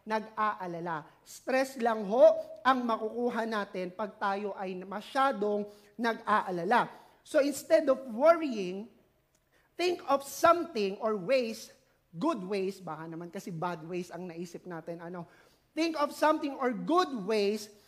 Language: English